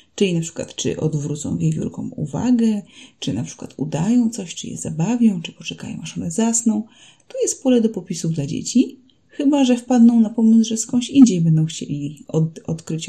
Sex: female